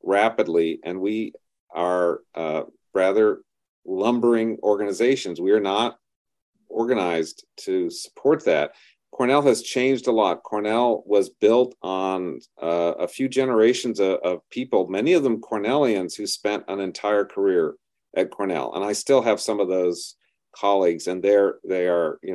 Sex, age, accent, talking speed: male, 40-59, American, 150 wpm